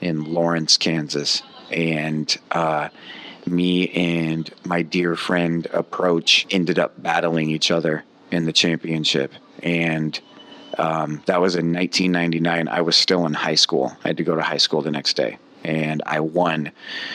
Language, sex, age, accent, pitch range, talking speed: English, male, 30-49, American, 80-90 Hz, 155 wpm